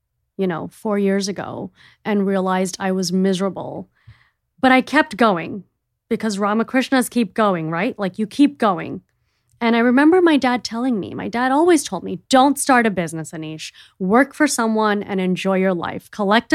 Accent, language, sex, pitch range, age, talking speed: American, English, female, 180-240 Hz, 20-39, 175 wpm